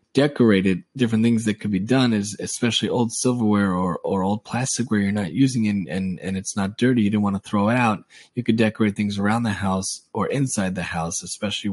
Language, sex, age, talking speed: English, male, 20-39, 230 wpm